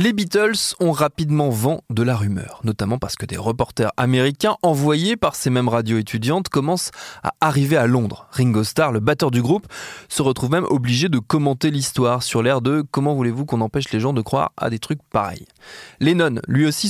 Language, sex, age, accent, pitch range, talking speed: French, male, 20-39, French, 120-160 Hz, 200 wpm